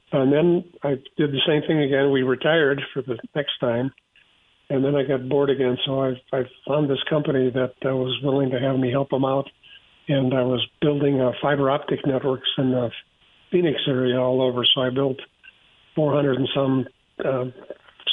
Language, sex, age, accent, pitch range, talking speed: English, male, 50-69, American, 130-140 Hz, 190 wpm